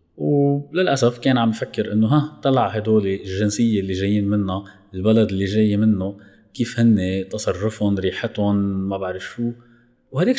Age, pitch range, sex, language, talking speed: 20-39, 100-125 Hz, male, Arabic, 140 wpm